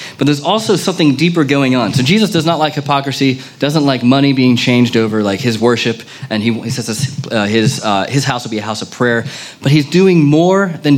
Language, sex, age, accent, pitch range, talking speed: English, male, 30-49, American, 120-155 Hz, 235 wpm